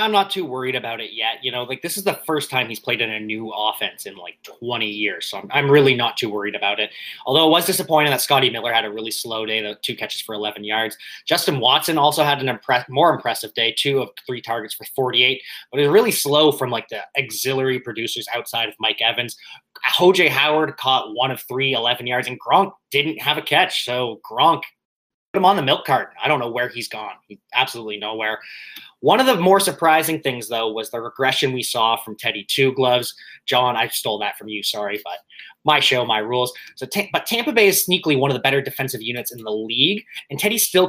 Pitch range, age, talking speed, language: 115-160 Hz, 20-39, 230 wpm, English